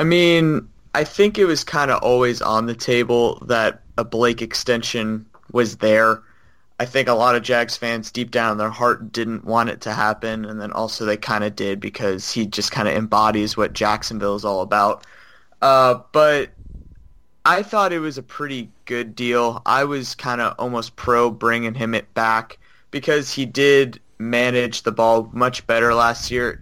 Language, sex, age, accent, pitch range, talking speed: English, male, 20-39, American, 110-125 Hz, 185 wpm